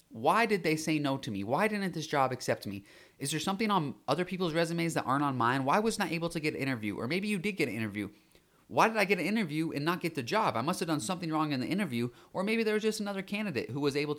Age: 30-49